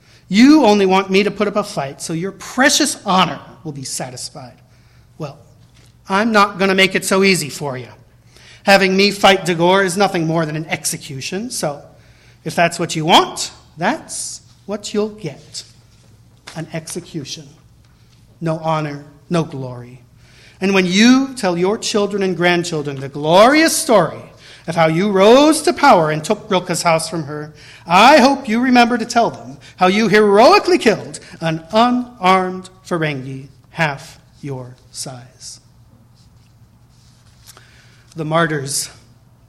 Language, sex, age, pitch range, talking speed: English, male, 40-59, 130-185 Hz, 145 wpm